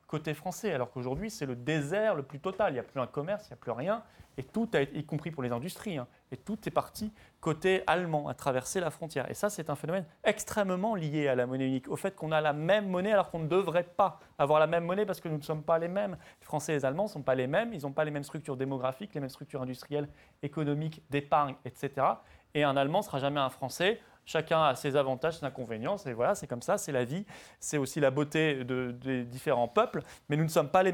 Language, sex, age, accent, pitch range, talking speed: French, male, 30-49, French, 135-180 Hz, 265 wpm